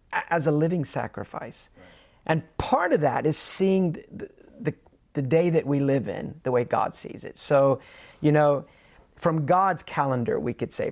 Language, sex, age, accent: English, male, 40-59, American